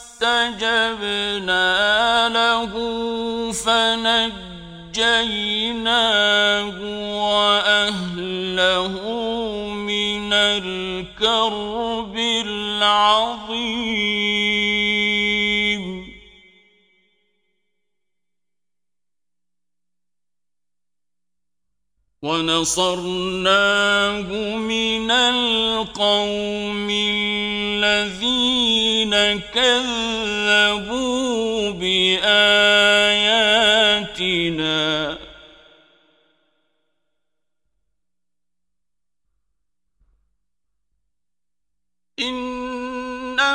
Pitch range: 185-245 Hz